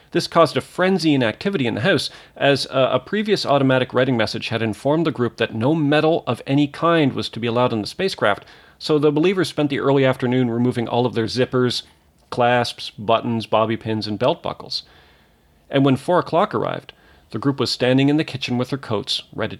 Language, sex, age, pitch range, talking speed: English, male, 40-59, 115-145 Hz, 205 wpm